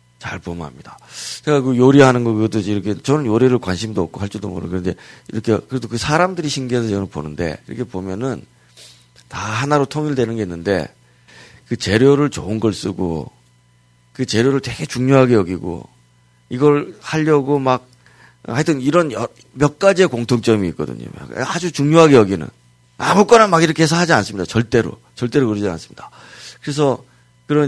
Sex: male